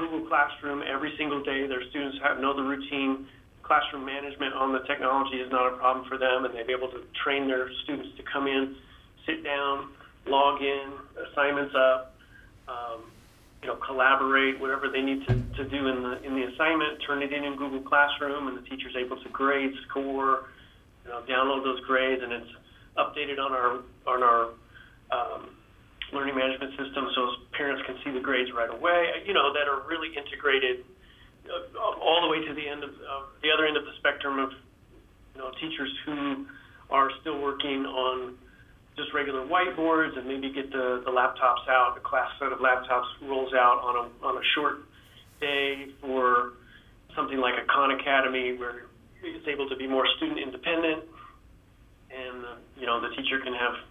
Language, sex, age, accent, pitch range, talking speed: English, male, 40-59, American, 125-145 Hz, 185 wpm